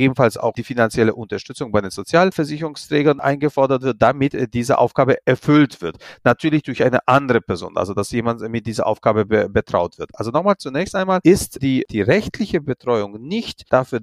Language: German